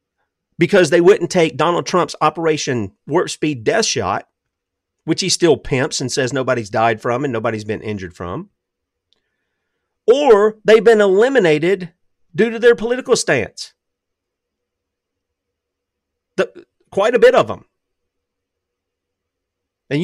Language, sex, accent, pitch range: English, male, American, 130-210 Hz